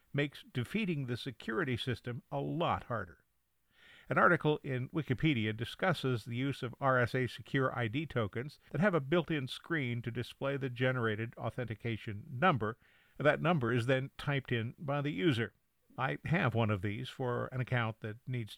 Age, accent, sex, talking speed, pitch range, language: 50-69, American, male, 165 wpm, 115-145 Hz, English